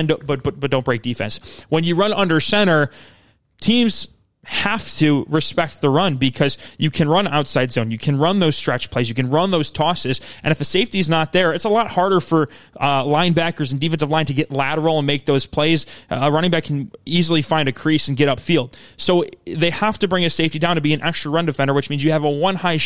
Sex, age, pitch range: male, 20-39, 135-170 Hz